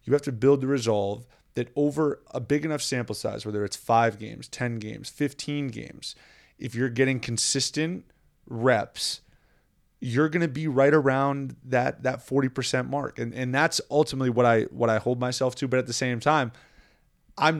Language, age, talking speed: English, 20-39, 185 wpm